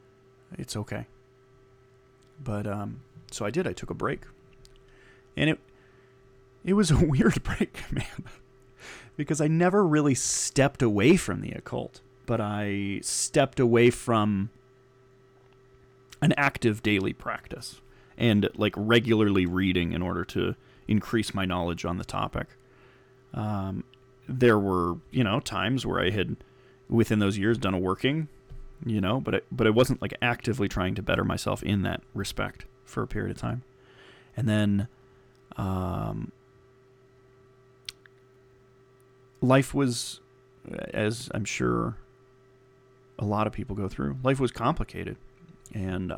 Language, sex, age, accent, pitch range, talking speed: English, male, 30-49, American, 105-130 Hz, 135 wpm